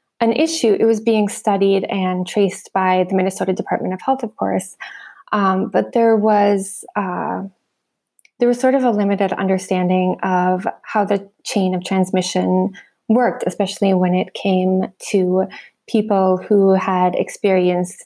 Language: English